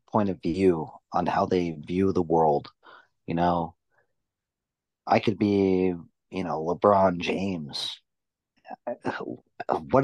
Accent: American